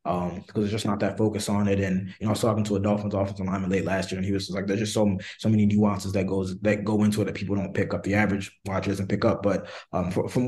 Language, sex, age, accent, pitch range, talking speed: English, male, 20-39, American, 100-115 Hz, 315 wpm